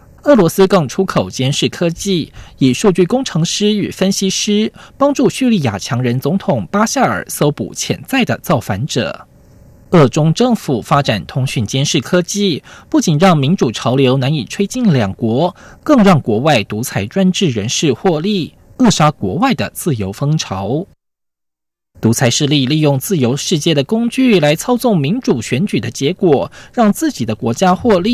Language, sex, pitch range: German, male, 130-200 Hz